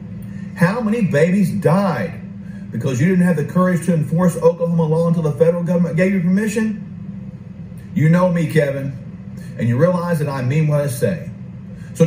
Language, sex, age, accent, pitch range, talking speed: English, male, 50-69, American, 140-185 Hz, 175 wpm